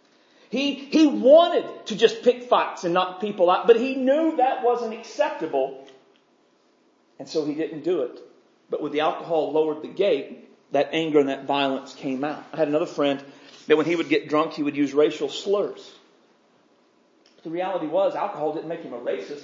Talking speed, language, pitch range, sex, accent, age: 190 wpm, English, 155-245 Hz, male, American, 40-59